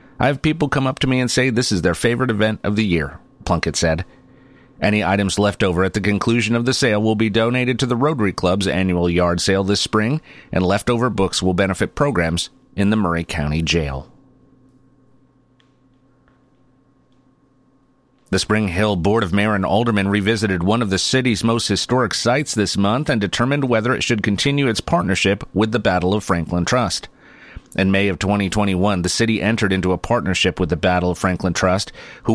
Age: 40-59